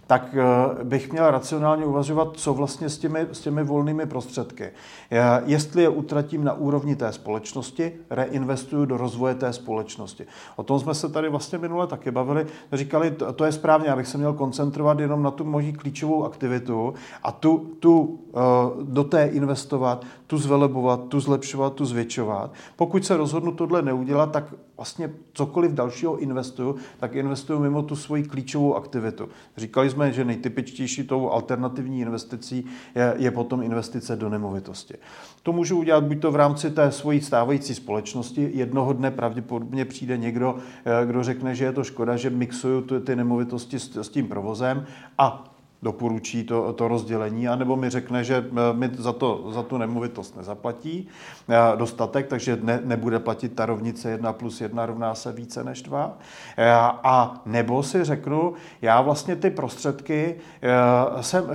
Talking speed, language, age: 155 wpm, Czech, 40-59